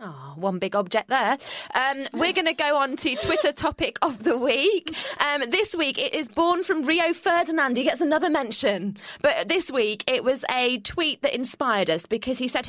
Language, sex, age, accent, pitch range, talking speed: English, female, 20-39, British, 200-295 Hz, 205 wpm